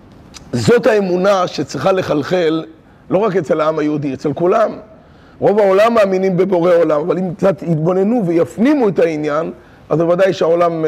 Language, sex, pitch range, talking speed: Hebrew, male, 155-200 Hz, 145 wpm